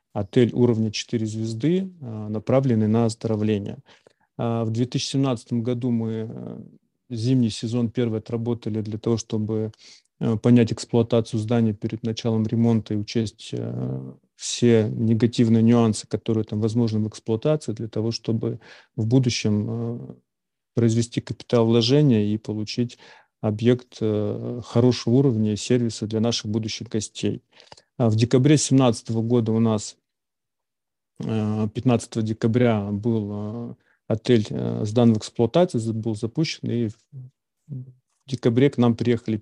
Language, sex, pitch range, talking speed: Russian, male, 110-120 Hz, 115 wpm